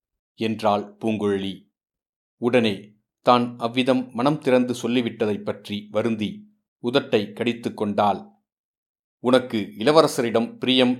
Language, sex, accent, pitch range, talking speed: Tamil, male, native, 110-135 Hz, 85 wpm